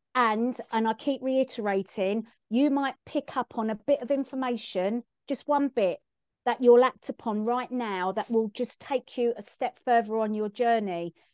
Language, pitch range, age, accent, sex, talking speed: English, 215-255 Hz, 40-59, British, female, 180 wpm